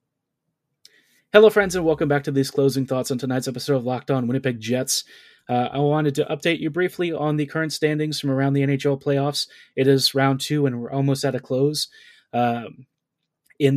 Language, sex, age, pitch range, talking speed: English, male, 30-49, 125-145 Hz, 195 wpm